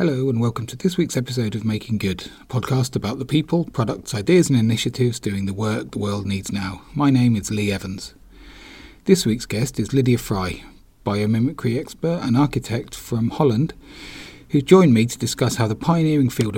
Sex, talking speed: male, 190 wpm